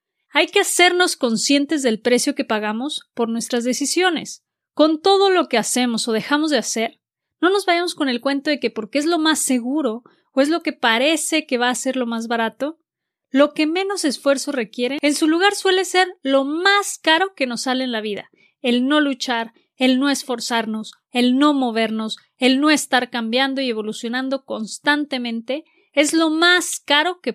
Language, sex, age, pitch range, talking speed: Spanish, female, 30-49, 235-310 Hz, 185 wpm